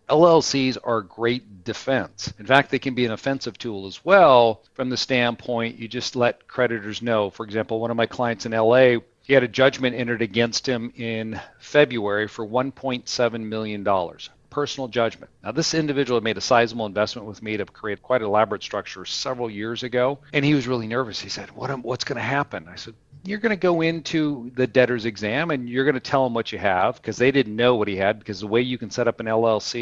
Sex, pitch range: male, 110-130 Hz